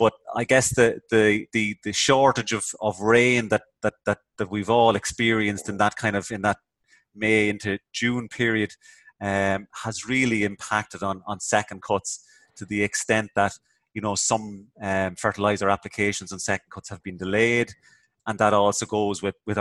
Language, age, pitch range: English, 30-49, 100-120 Hz